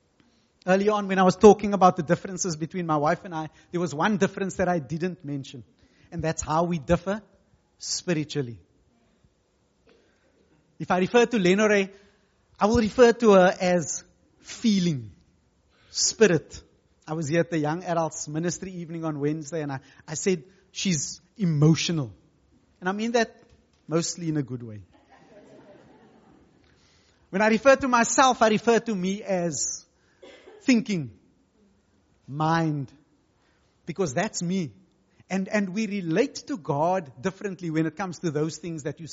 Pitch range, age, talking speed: 150-205 Hz, 30-49, 150 wpm